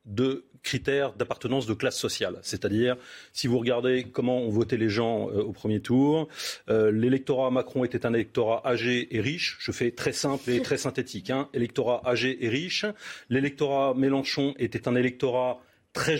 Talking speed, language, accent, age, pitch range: 170 wpm, French, French, 40-59, 115-140 Hz